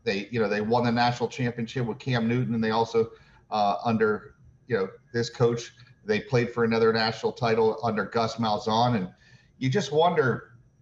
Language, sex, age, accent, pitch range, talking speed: English, male, 40-59, American, 115-135 Hz, 185 wpm